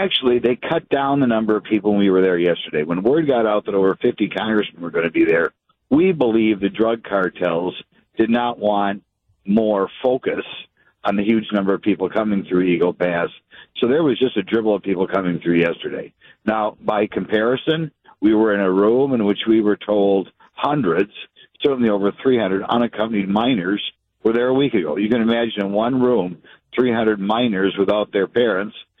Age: 60-79